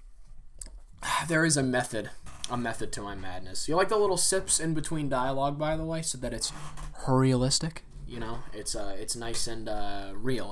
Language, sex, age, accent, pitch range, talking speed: English, male, 20-39, American, 100-130 Hz, 190 wpm